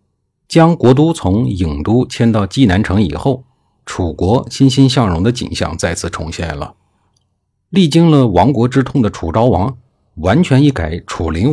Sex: male